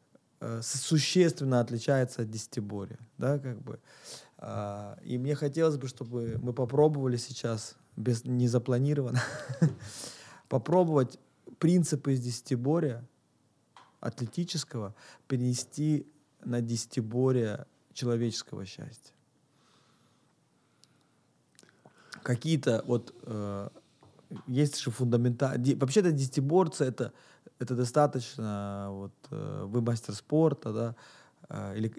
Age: 20-39